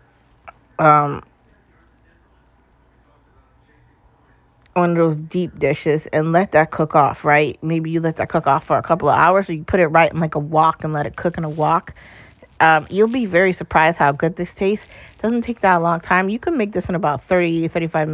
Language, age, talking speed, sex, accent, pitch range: English, 40-59, 200 wpm, female, American, 165-205 Hz